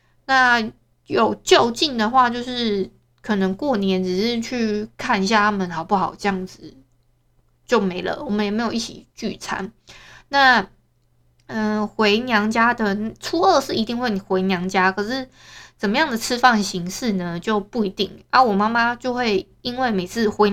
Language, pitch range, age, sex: Chinese, 195-235 Hz, 20-39, female